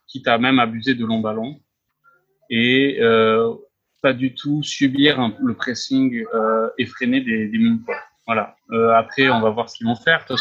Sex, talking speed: male, 185 wpm